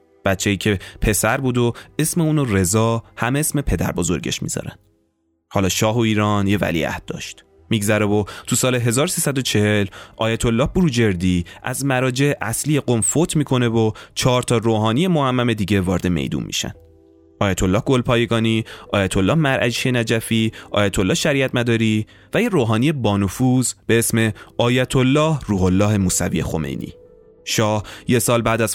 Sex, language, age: male, Persian, 30-49